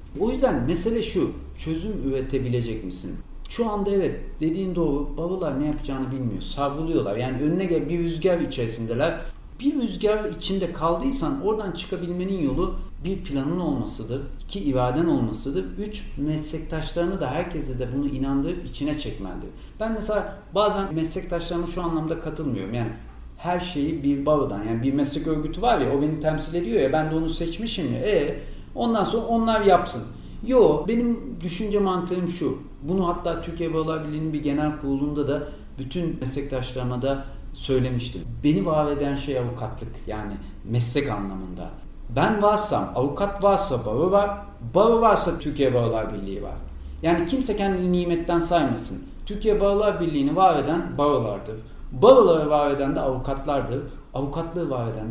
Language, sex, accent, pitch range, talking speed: Turkish, male, native, 130-180 Hz, 145 wpm